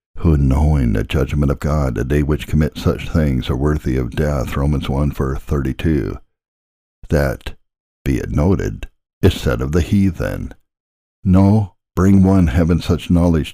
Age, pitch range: 60-79, 75-90 Hz